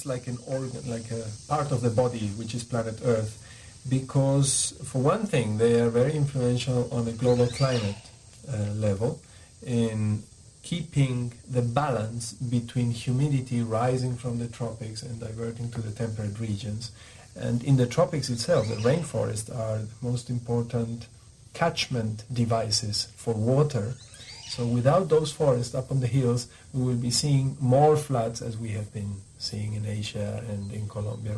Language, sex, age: English, male, 50-69